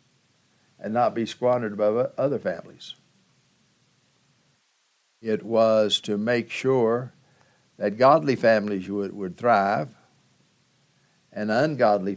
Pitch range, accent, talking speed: 105-135 Hz, American, 100 wpm